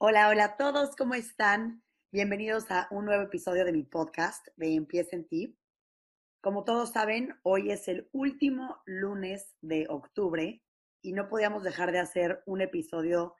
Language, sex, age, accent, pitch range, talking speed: Spanish, female, 20-39, Mexican, 170-200 Hz, 160 wpm